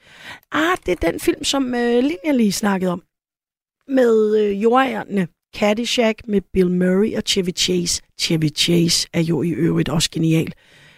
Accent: native